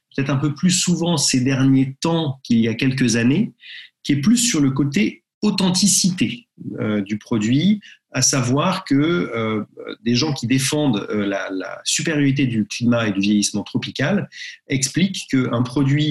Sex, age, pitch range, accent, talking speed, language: male, 40-59, 115-140 Hz, French, 165 wpm, French